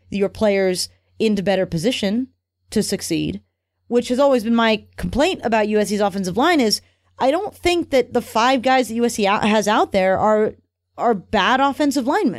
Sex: female